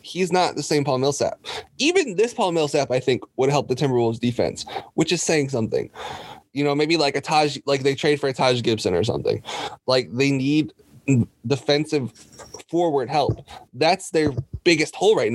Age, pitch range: 20-39, 135-190 Hz